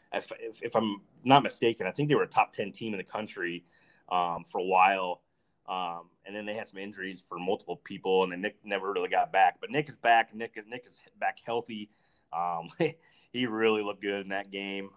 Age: 30-49